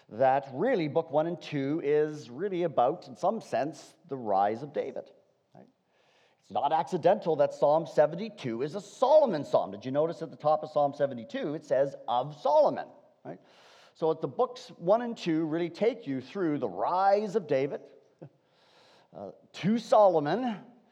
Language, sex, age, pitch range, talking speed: English, male, 50-69, 150-220 Hz, 165 wpm